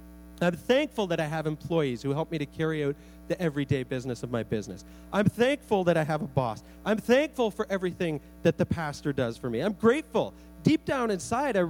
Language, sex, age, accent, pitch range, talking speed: English, male, 40-59, American, 130-215 Hz, 210 wpm